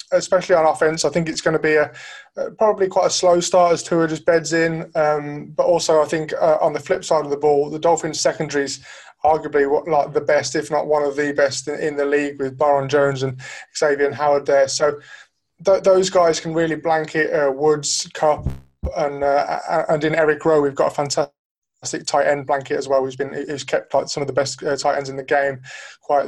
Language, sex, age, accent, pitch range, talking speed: English, male, 20-39, British, 135-160 Hz, 240 wpm